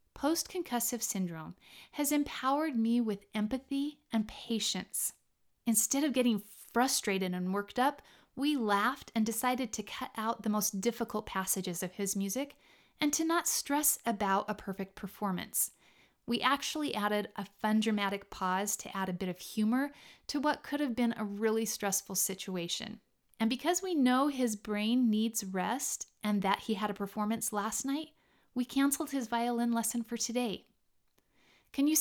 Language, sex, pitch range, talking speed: English, female, 205-260 Hz, 160 wpm